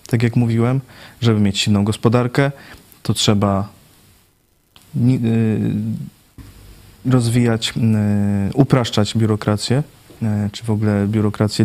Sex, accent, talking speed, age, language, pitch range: male, native, 80 wpm, 20-39, Polish, 105-115 Hz